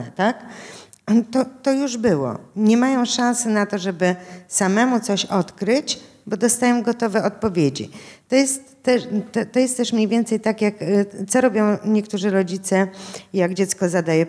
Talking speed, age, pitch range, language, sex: 150 wpm, 50-69, 155-230 Hz, Polish, female